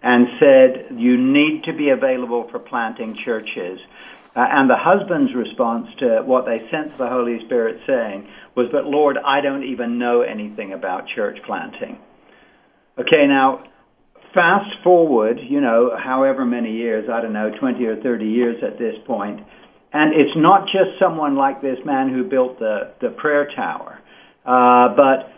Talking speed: 165 wpm